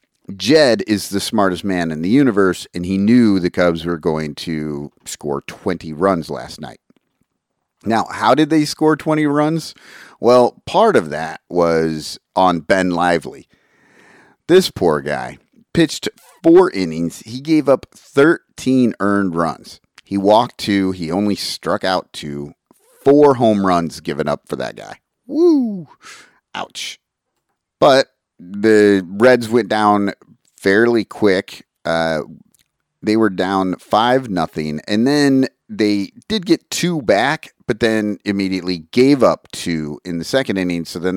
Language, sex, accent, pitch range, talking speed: English, male, American, 85-130 Hz, 145 wpm